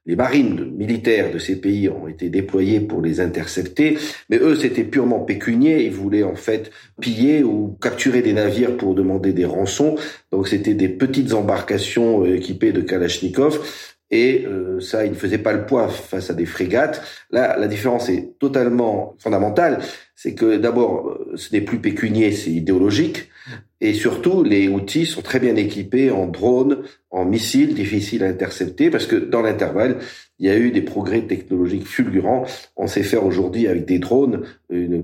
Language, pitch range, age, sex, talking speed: French, 95-125 Hz, 40-59, male, 170 wpm